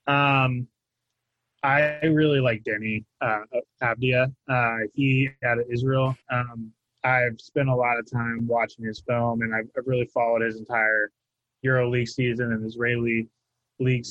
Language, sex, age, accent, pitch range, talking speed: English, male, 20-39, American, 115-130 Hz, 145 wpm